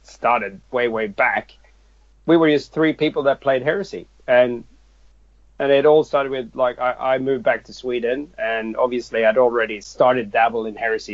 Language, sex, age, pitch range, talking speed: English, male, 30-49, 110-140 Hz, 180 wpm